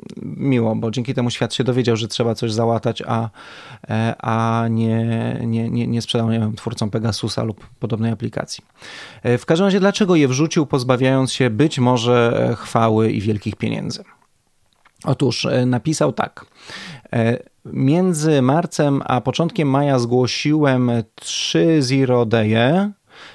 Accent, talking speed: native, 130 wpm